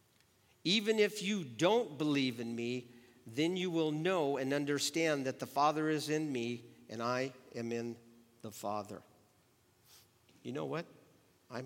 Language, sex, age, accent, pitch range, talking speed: English, male, 50-69, American, 110-135 Hz, 150 wpm